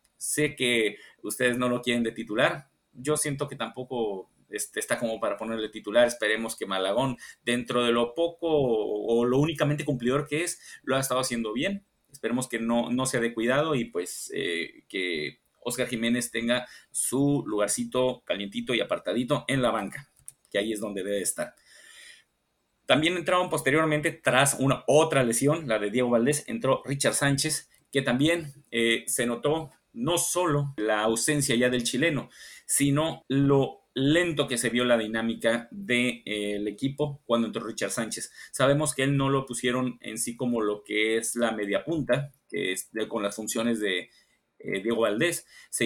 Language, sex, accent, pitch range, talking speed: Spanish, male, Mexican, 115-140 Hz, 170 wpm